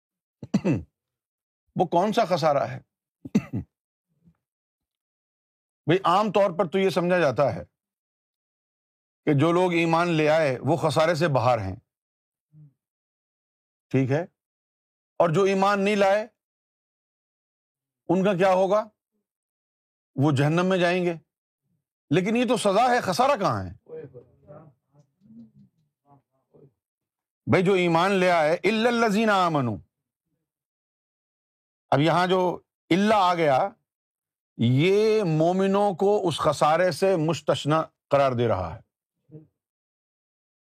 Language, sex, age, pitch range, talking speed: Urdu, male, 50-69, 135-190 Hz, 105 wpm